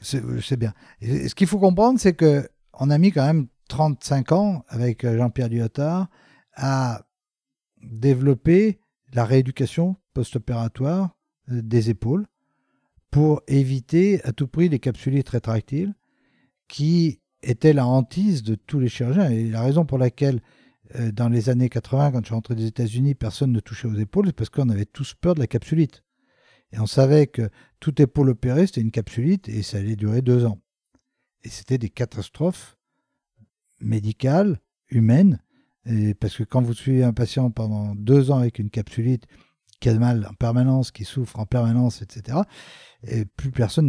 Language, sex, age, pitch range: French, male, 50-69, 115-150 Hz